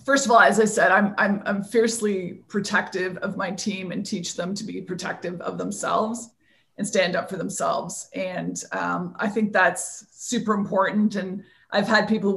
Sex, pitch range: female, 185-215 Hz